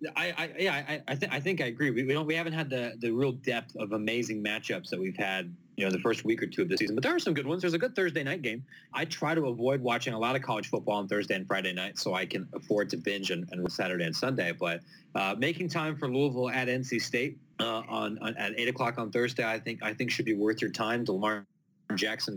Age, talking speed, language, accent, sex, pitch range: 30-49, 280 wpm, English, American, male, 110-150 Hz